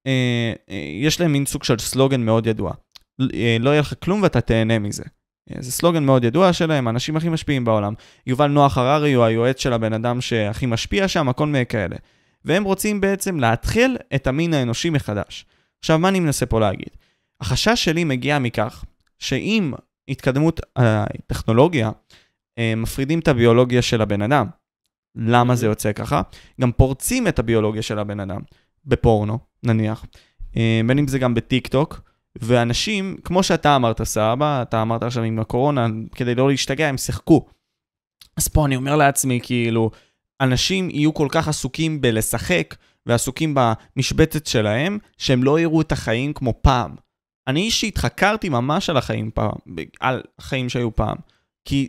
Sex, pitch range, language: male, 115-150 Hz, Hebrew